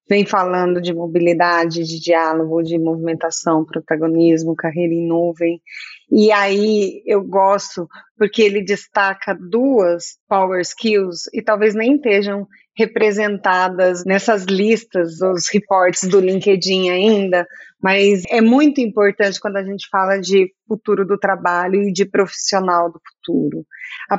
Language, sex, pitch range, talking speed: Portuguese, female, 180-225 Hz, 130 wpm